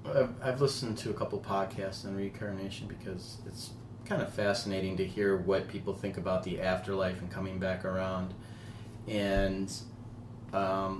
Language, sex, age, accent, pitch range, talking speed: English, male, 30-49, American, 100-115 Hz, 145 wpm